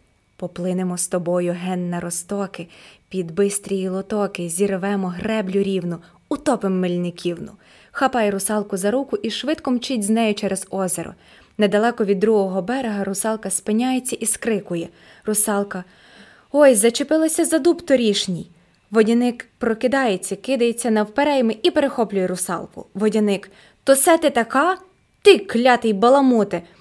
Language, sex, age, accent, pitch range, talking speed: Ukrainian, female, 20-39, native, 190-245 Hz, 120 wpm